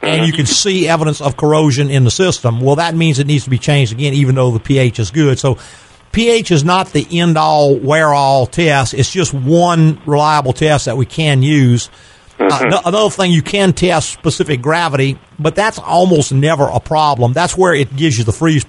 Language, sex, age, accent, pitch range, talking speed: English, male, 50-69, American, 125-160 Hz, 200 wpm